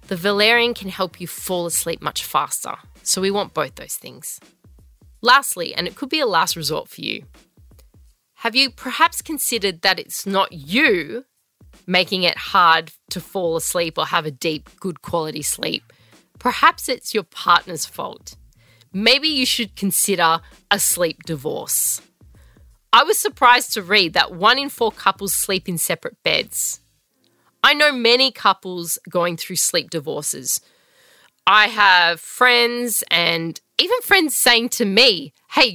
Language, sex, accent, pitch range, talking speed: English, female, Australian, 175-250 Hz, 150 wpm